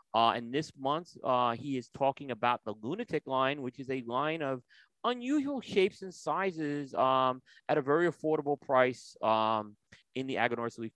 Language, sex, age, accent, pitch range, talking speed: English, male, 30-49, American, 120-150 Hz, 175 wpm